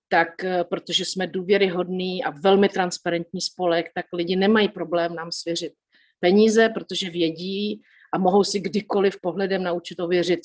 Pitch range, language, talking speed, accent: 170-190 Hz, Czech, 145 wpm, native